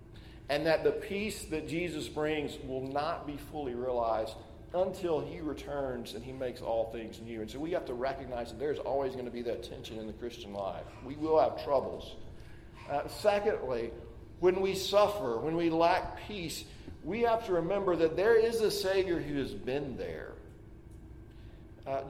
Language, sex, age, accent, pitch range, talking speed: English, male, 40-59, American, 115-175 Hz, 180 wpm